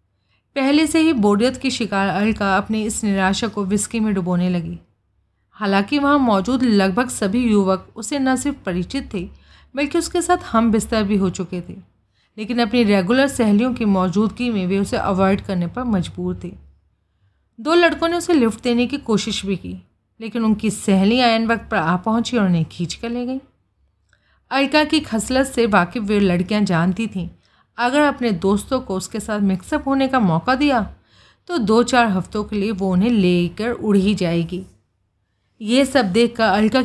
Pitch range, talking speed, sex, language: 180-245 Hz, 175 wpm, female, Hindi